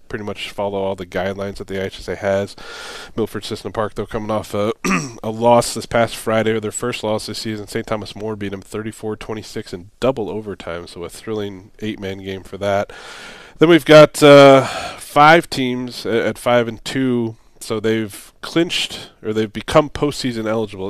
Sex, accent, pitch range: male, American, 100-120 Hz